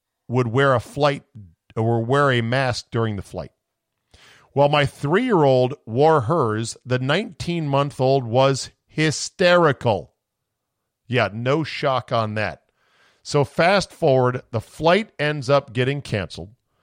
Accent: American